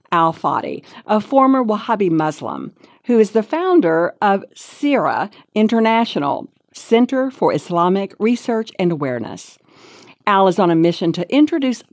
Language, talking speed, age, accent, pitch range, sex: English, 130 wpm, 50-69, American, 170-240 Hz, female